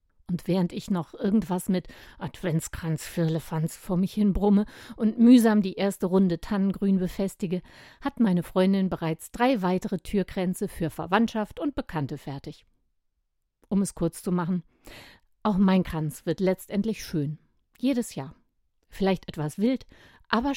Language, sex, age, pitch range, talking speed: German, female, 50-69, 175-220 Hz, 140 wpm